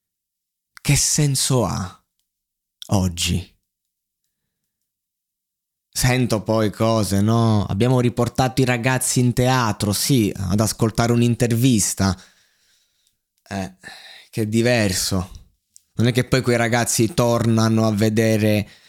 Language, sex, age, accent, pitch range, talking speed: Italian, male, 20-39, native, 100-120 Hz, 95 wpm